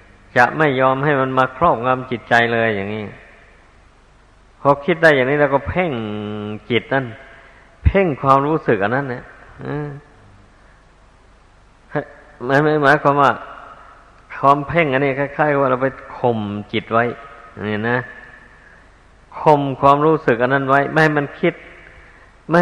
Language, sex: Thai, male